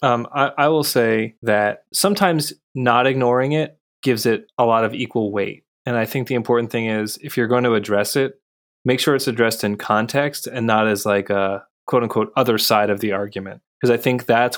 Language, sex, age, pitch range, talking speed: English, male, 20-39, 105-125 Hz, 215 wpm